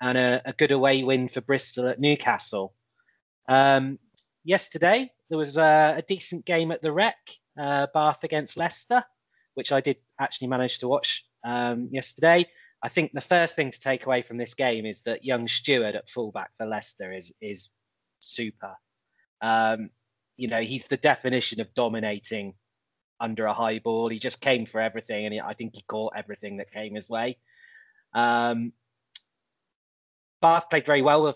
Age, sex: 20-39, male